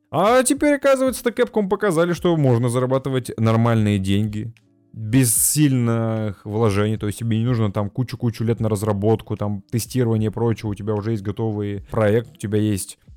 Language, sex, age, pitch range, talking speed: Russian, male, 20-39, 110-130 Hz, 165 wpm